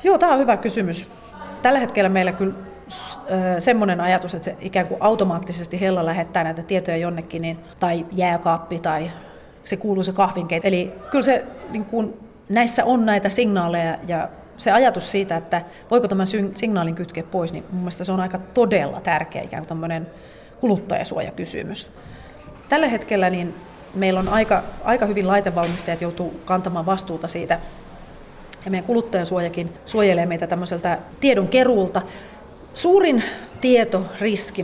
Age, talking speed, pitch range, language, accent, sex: 30-49, 140 wpm, 170-210 Hz, Finnish, native, female